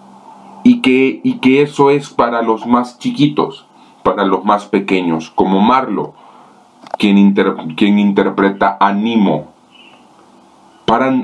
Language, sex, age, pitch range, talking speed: Spanish, male, 40-59, 100-120 Hz, 110 wpm